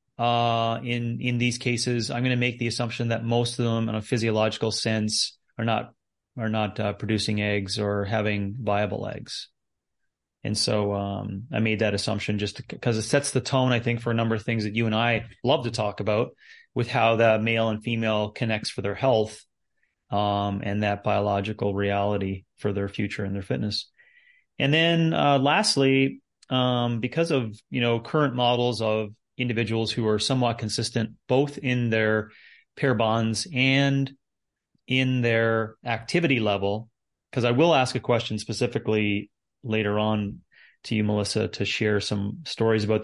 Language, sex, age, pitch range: English, male, 30-49, 105-120 Hz